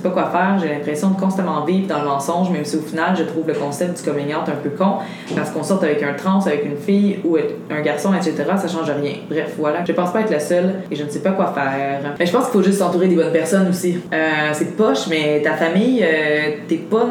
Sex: female